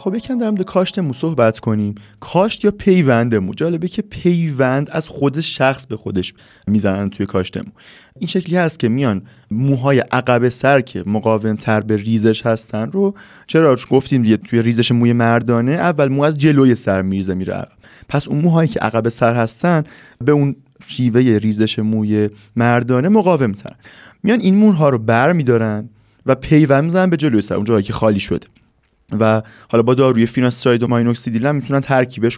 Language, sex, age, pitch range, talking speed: Persian, male, 30-49, 110-150 Hz, 170 wpm